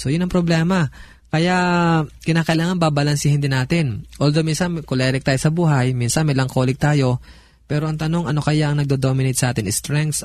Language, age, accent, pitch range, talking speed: Filipino, 20-39, native, 125-155 Hz, 160 wpm